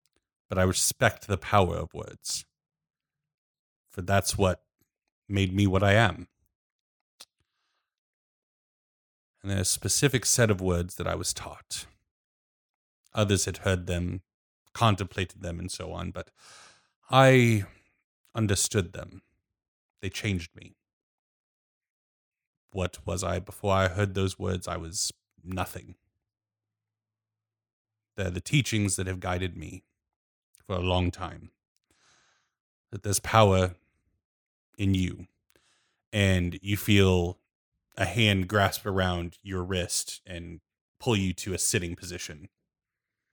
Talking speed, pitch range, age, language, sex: 120 wpm, 90-105 Hz, 30-49, English, male